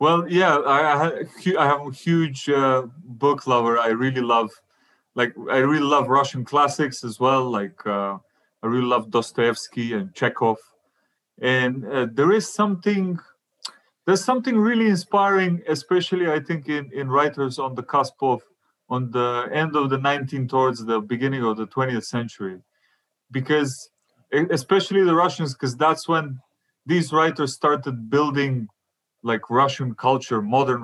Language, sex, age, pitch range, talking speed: English, male, 30-49, 120-165 Hz, 150 wpm